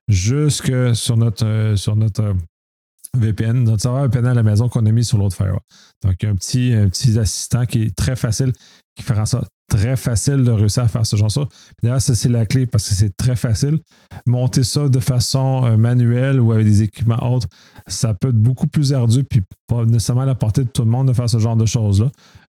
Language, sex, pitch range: French, male, 110-125 Hz